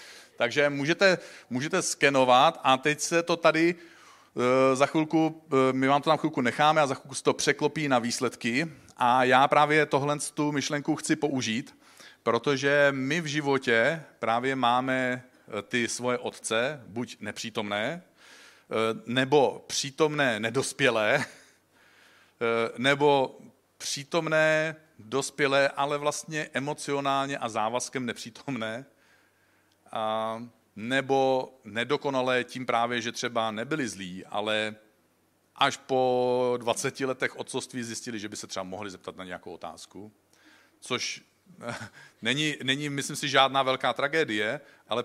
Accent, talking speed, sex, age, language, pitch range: native, 120 wpm, male, 40-59, Czech, 115-145 Hz